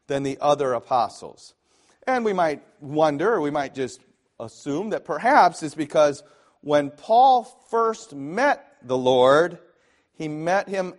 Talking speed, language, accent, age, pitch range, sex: 135 wpm, English, American, 40-59, 130-165 Hz, male